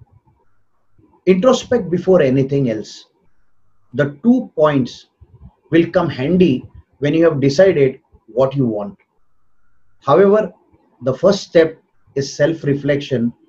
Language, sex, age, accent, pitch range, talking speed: English, male, 30-49, Indian, 135-195 Hz, 100 wpm